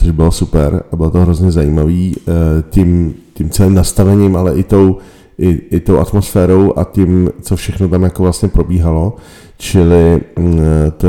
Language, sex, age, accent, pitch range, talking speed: Czech, male, 40-59, native, 80-95 Hz, 155 wpm